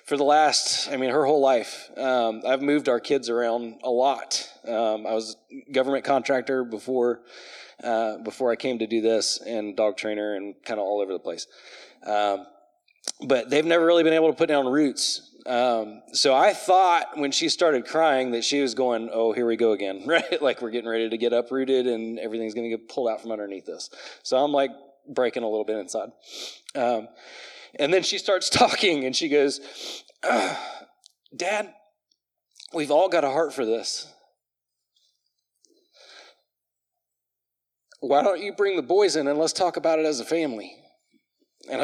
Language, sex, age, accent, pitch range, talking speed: English, male, 20-39, American, 115-160 Hz, 180 wpm